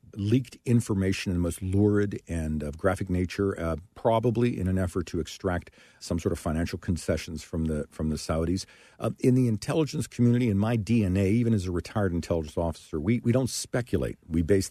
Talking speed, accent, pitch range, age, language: 190 wpm, American, 85-105 Hz, 50-69, English